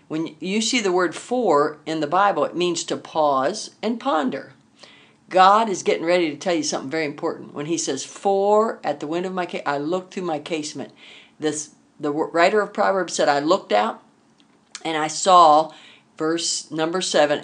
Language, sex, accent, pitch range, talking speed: English, female, American, 150-185 Hz, 190 wpm